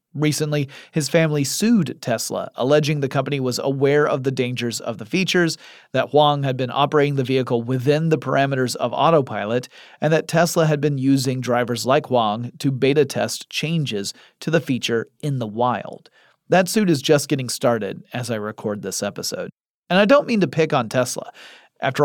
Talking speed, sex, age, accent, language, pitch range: 180 wpm, male, 30-49, American, English, 120-155 Hz